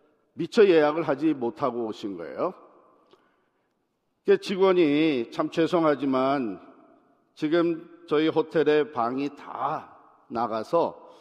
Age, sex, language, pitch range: 50-69, male, Korean, 125-170 Hz